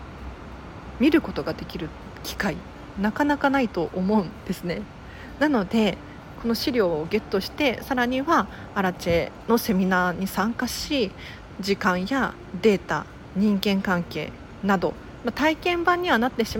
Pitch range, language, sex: 180-245 Hz, Japanese, female